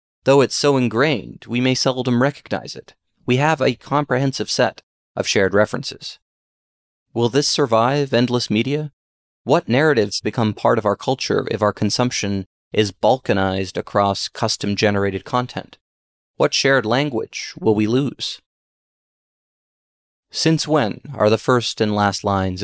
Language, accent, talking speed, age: English, American, 135 wpm, 30-49